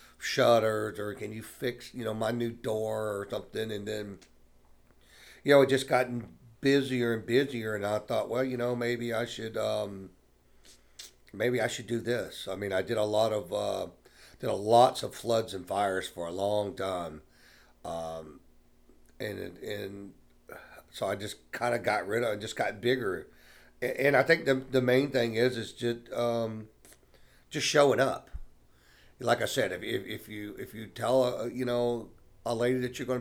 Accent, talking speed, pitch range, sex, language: American, 185 wpm, 95-120 Hz, male, English